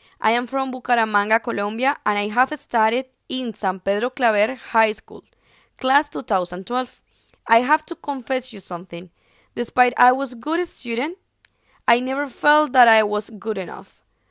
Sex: female